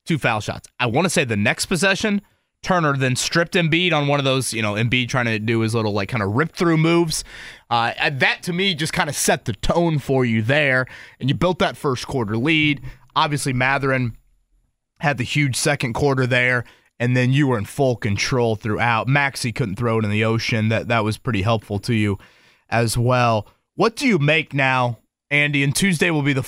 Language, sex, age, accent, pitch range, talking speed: English, male, 20-39, American, 115-150 Hz, 215 wpm